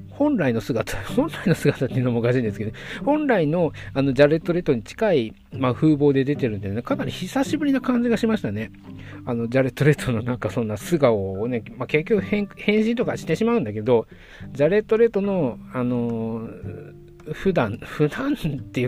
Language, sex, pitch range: Japanese, male, 120-195 Hz